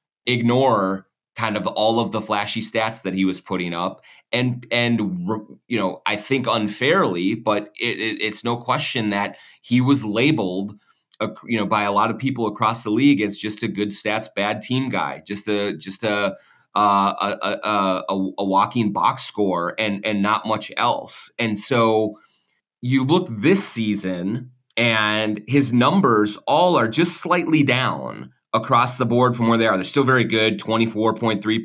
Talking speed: 175 wpm